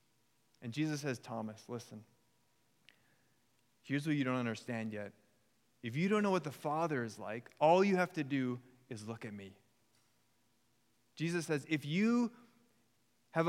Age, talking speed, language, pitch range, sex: 20-39, 150 wpm, English, 125-185 Hz, male